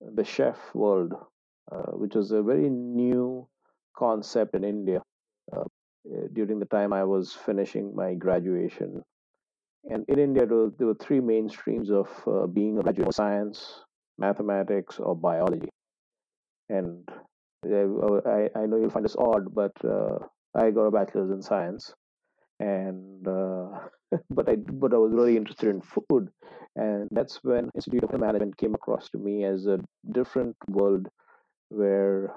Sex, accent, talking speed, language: male, Indian, 150 wpm, English